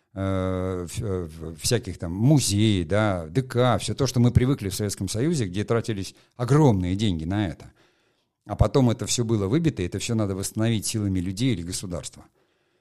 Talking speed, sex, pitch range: 160 wpm, male, 95-125 Hz